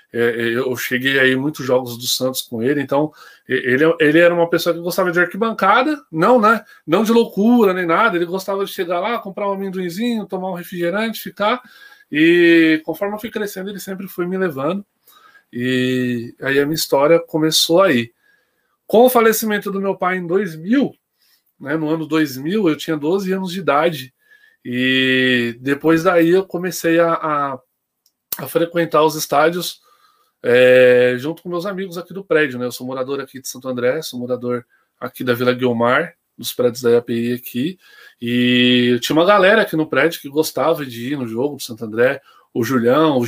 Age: 20-39